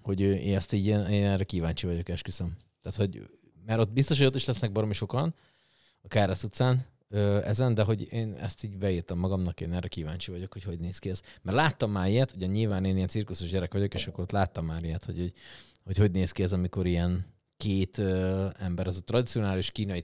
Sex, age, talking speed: male, 30-49, 215 wpm